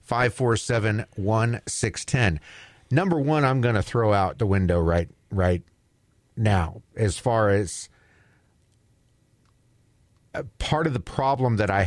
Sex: male